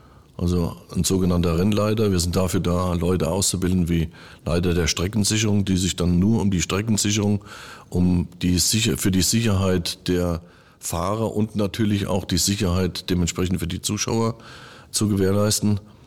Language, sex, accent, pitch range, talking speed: German, male, German, 90-105 Hz, 140 wpm